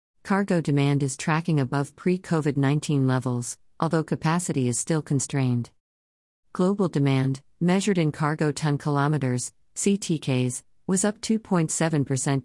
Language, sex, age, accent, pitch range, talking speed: English, female, 50-69, American, 130-160 Hz, 110 wpm